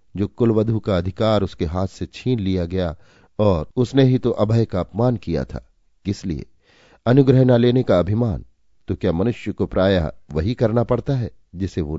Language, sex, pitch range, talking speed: Hindi, male, 85-115 Hz, 180 wpm